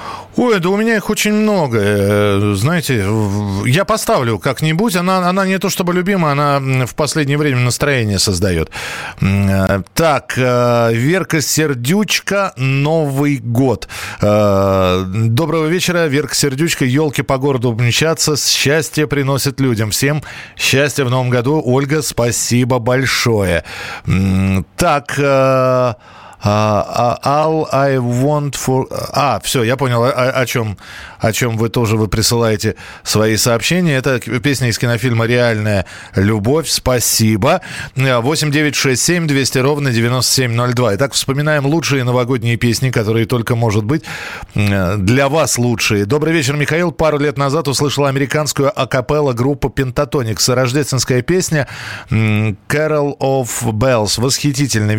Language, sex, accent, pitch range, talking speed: Russian, male, native, 115-150 Hz, 115 wpm